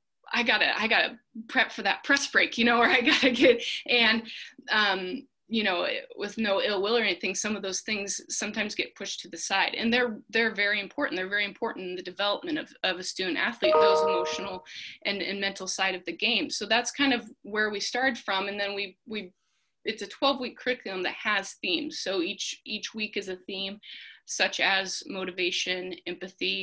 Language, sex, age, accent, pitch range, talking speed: English, female, 20-39, American, 190-240 Hz, 205 wpm